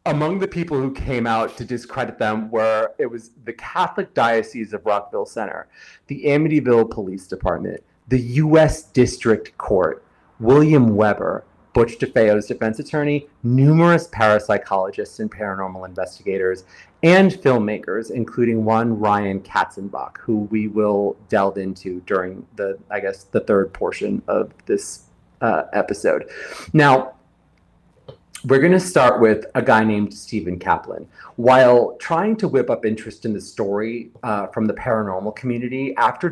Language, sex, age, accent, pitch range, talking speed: English, male, 30-49, American, 105-140 Hz, 140 wpm